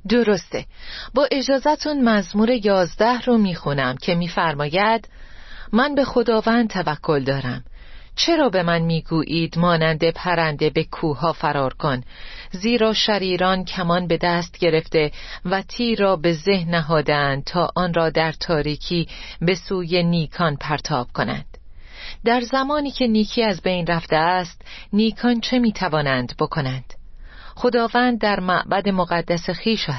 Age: 40-59